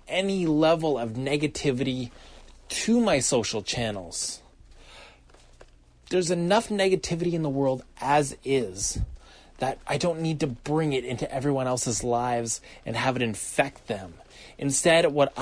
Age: 20-39